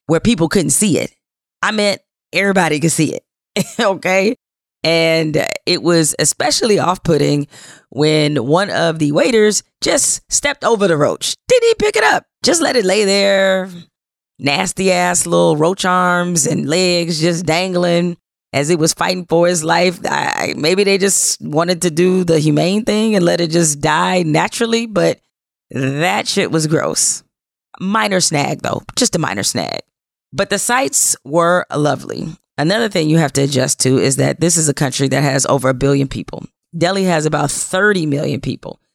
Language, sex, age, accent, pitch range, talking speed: English, female, 10-29, American, 155-195 Hz, 175 wpm